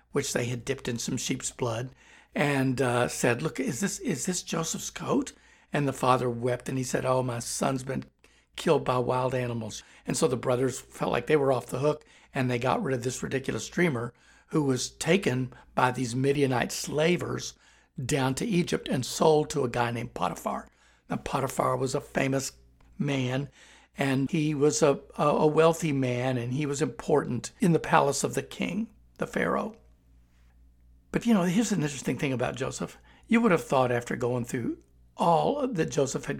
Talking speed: 190 wpm